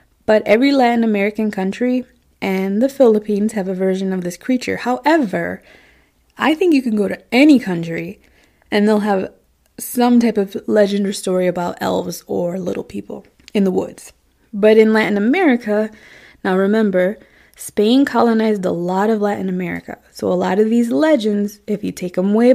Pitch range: 185-230 Hz